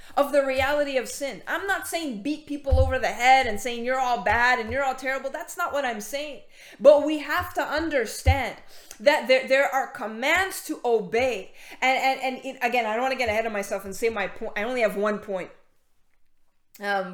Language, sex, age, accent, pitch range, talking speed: English, female, 20-39, American, 225-280 Hz, 215 wpm